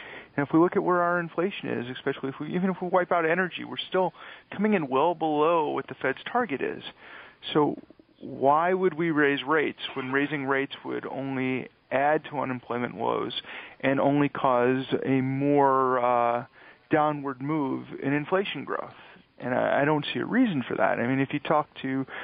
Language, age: English, 40-59